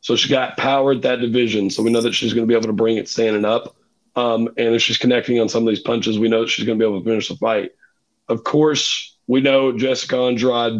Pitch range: 115-140 Hz